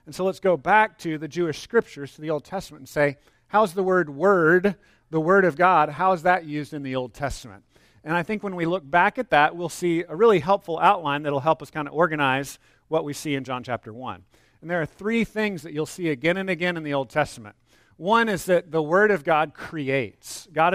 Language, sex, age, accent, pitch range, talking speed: English, male, 40-59, American, 140-175 Hz, 245 wpm